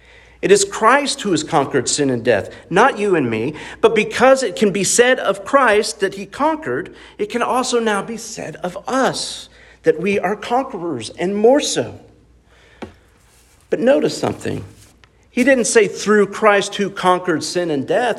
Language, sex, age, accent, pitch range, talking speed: English, male, 50-69, American, 125-200 Hz, 170 wpm